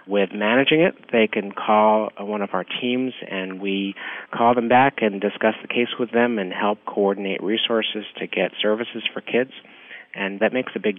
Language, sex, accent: English, male, American